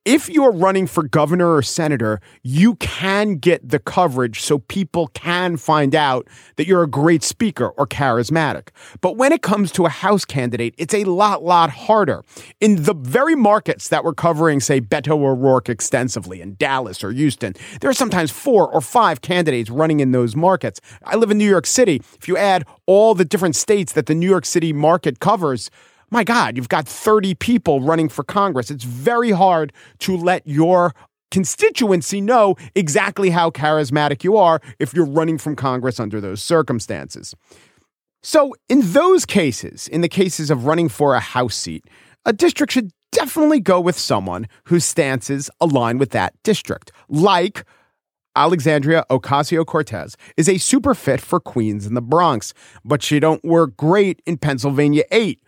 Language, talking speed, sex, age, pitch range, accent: English, 170 wpm, male, 40-59, 135-190 Hz, American